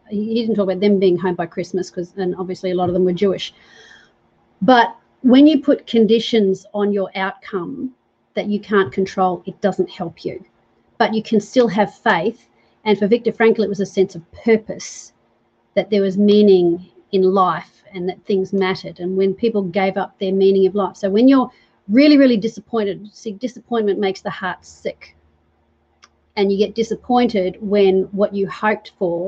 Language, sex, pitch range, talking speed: English, female, 185-210 Hz, 185 wpm